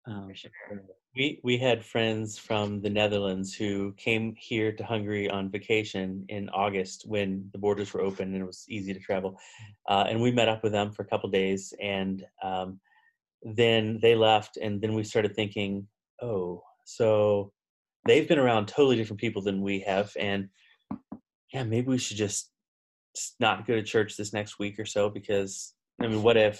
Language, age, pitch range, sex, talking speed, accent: English, 30-49, 100-120 Hz, male, 180 wpm, American